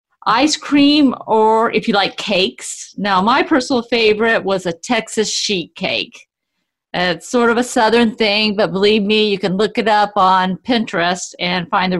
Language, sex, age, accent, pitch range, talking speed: English, female, 50-69, American, 185-240 Hz, 175 wpm